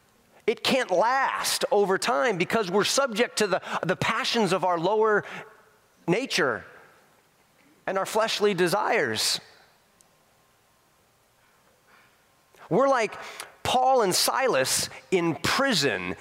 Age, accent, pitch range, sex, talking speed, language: 30-49, American, 185-235 Hz, male, 100 wpm, English